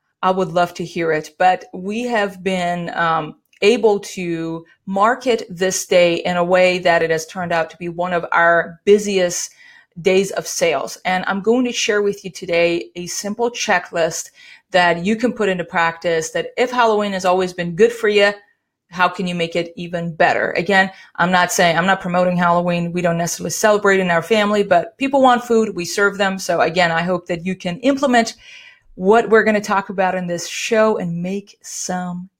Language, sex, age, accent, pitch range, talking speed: English, female, 30-49, American, 175-215 Hz, 200 wpm